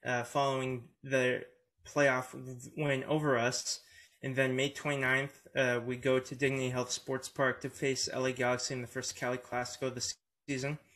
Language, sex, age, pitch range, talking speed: English, male, 20-39, 130-145 Hz, 165 wpm